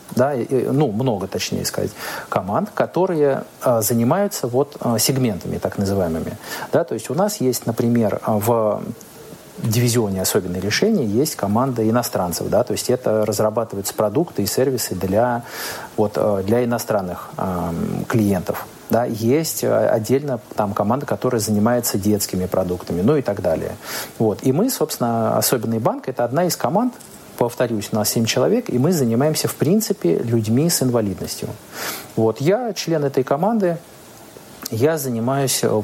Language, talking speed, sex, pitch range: Russian, 140 wpm, male, 110-140 Hz